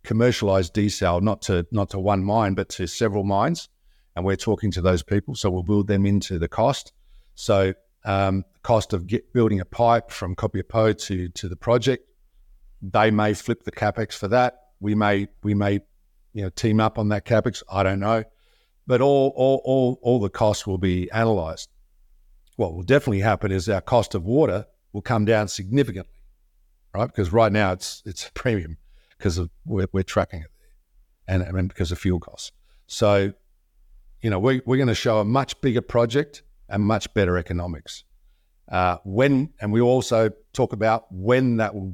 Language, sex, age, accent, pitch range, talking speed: English, male, 50-69, Australian, 90-115 Hz, 185 wpm